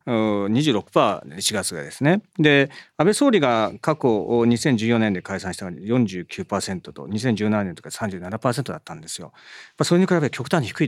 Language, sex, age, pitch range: Japanese, male, 40-59, 110-180 Hz